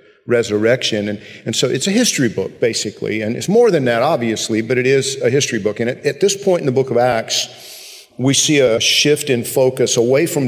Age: 50-69